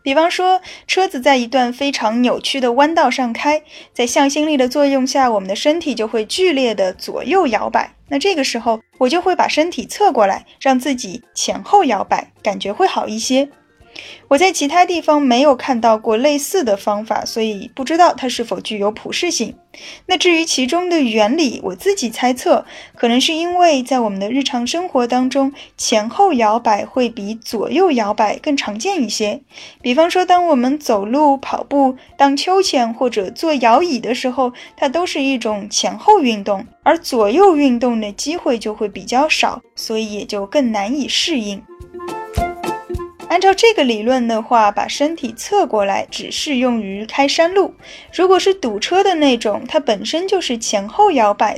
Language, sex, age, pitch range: Chinese, female, 10-29, 225-315 Hz